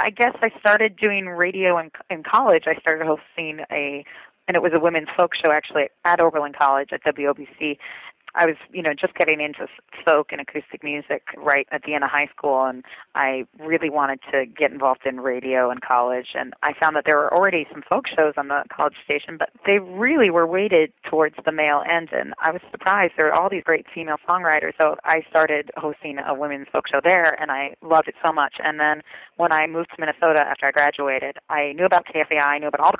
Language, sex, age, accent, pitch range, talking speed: English, female, 30-49, American, 140-160 Hz, 220 wpm